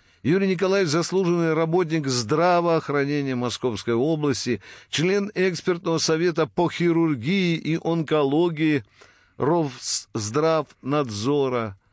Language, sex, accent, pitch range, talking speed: Russian, male, native, 120-165 Hz, 75 wpm